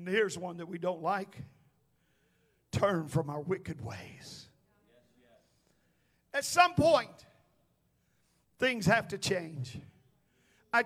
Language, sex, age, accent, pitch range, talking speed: English, male, 50-69, American, 155-230 Hz, 110 wpm